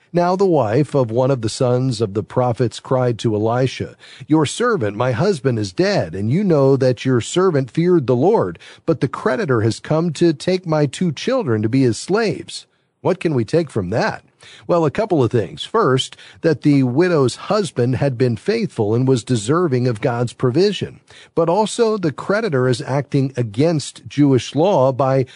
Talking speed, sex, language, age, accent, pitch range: 185 wpm, male, English, 40-59, American, 120-155 Hz